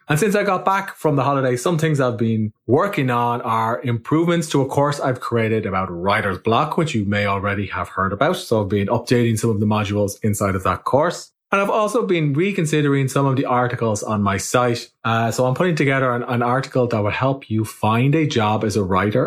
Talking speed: 225 wpm